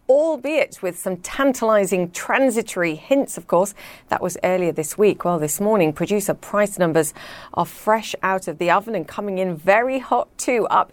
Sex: female